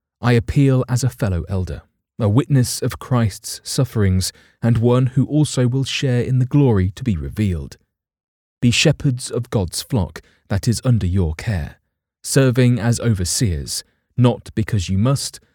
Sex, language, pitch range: male, English, 95-125 Hz